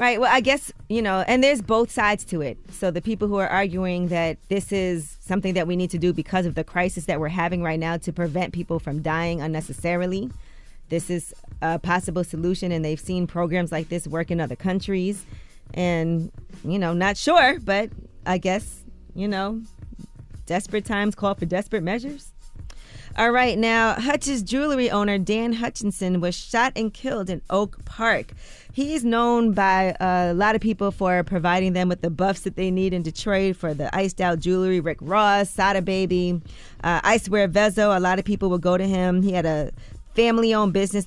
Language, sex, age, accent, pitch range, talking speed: English, female, 20-39, American, 175-205 Hz, 190 wpm